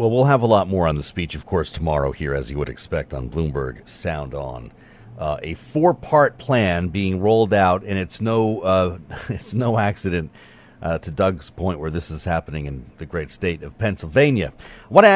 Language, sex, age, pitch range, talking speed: English, male, 40-59, 90-120 Hz, 210 wpm